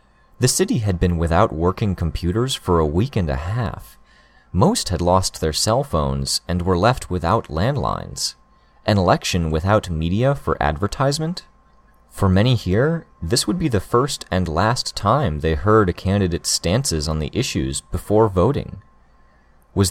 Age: 30-49